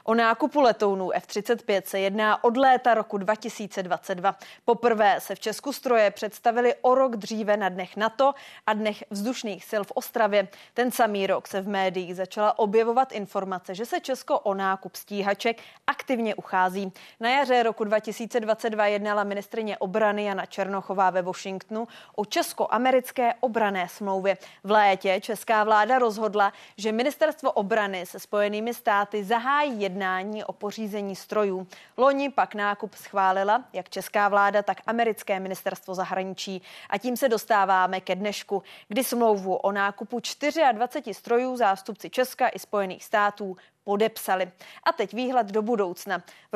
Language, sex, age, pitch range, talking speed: Czech, female, 20-39, 195-230 Hz, 140 wpm